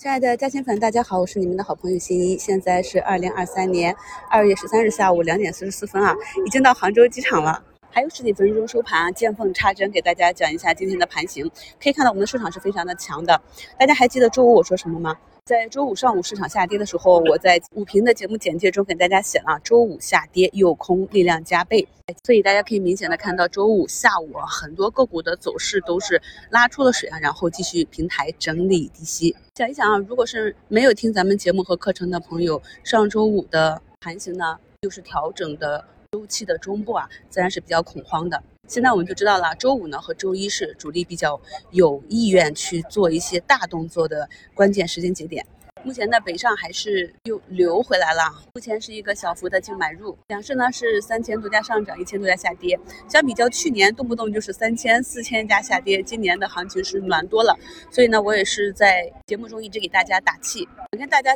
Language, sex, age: Chinese, female, 30-49